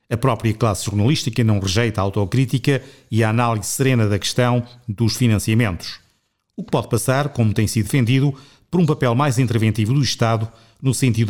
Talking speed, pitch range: 175 wpm, 110-130 Hz